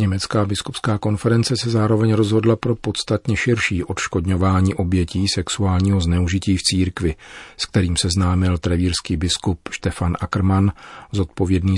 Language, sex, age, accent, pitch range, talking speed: Czech, male, 40-59, native, 85-100 Hz, 120 wpm